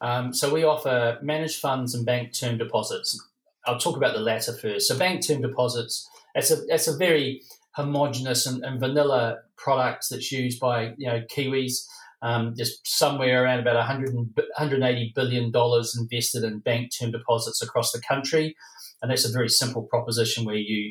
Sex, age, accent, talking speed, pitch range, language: male, 40-59, Australian, 170 wpm, 120-145 Hz, English